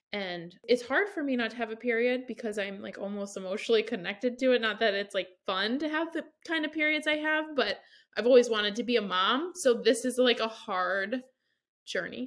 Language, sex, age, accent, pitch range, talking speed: English, female, 20-39, American, 215-265 Hz, 225 wpm